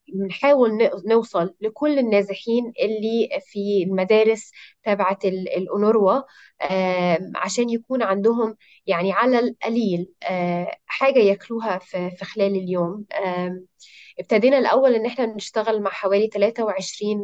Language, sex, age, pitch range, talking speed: Arabic, female, 20-39, 190-230 Hz, 95 wpm